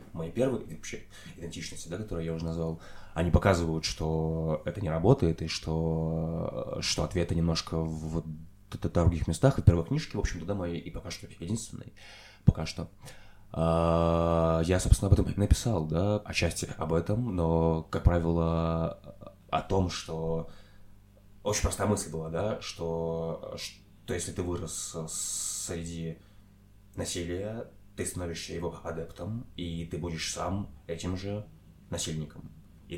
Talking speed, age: 140 wpm, 20-39